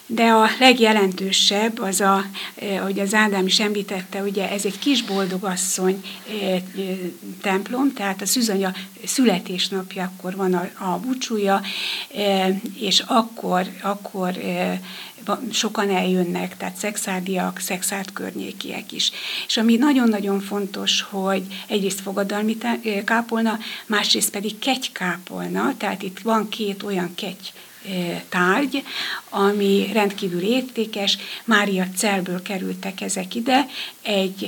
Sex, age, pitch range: female, 60-79, 190-220 Hz